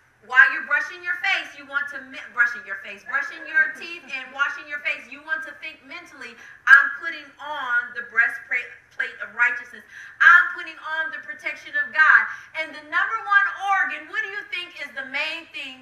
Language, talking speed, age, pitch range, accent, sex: English, 190 wpm, 30-49, 260-340 Hz, American, female